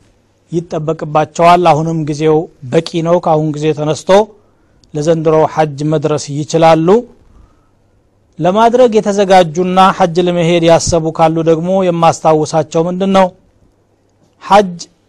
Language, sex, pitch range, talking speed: Amharic, male, 155-180 Hz, 90 wpm